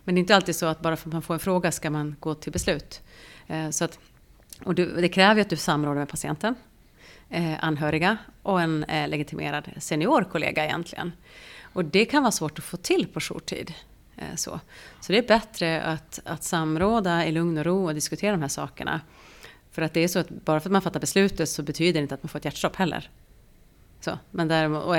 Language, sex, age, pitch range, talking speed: Swedish, female, 30-49, 155-180 Hz, 215 wpm